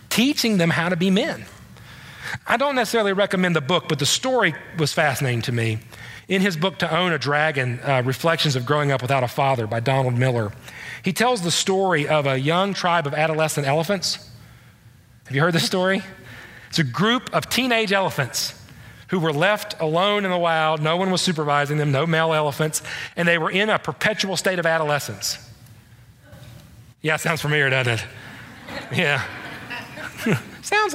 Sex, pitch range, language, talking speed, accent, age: male, 135-185 Hz, English, 175 wpm, American, 40-59